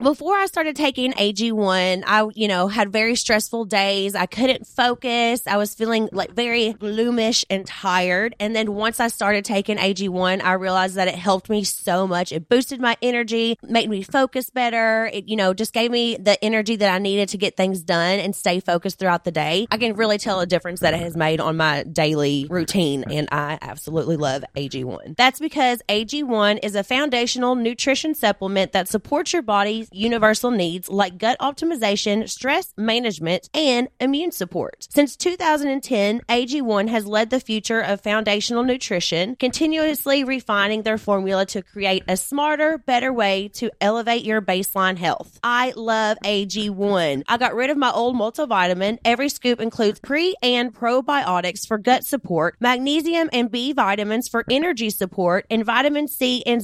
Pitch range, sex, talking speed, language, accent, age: 195-245 Hz, female, 175 wpm, English, American, 20-39